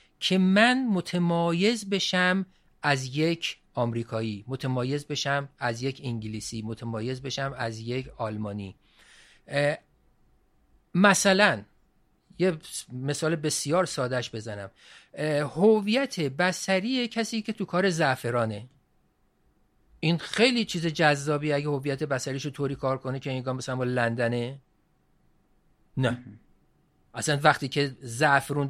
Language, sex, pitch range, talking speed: Persian, male, 130-185 Hz, 105 wpm